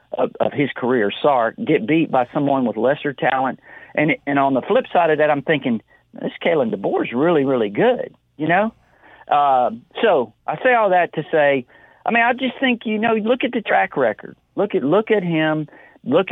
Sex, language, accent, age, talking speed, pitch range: male, English, American, 50-69, 205 wpm, 125-175 Hz